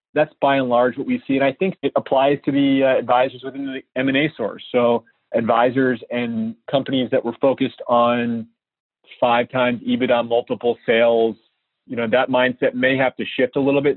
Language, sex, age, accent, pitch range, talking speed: English, male, 30-49, American, 115-130 Hz, 185 wpm